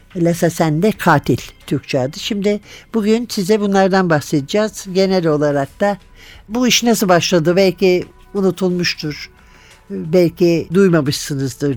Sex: male